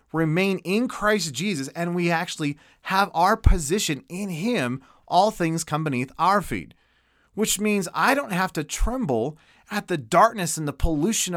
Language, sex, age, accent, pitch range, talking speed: English, male, 30-49, American, 140-195 Hz, 165 wpm